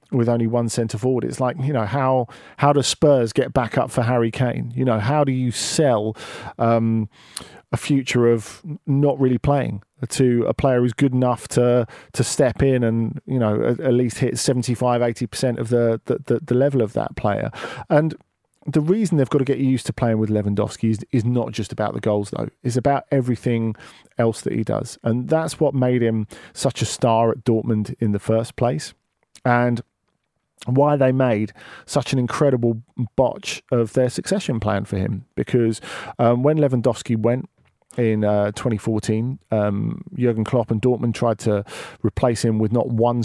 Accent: British